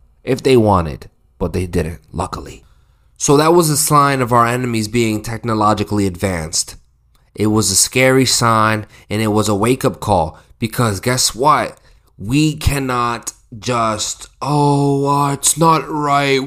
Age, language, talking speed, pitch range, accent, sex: 20-39, English, 145 wpm, 105-130 Hz, American, male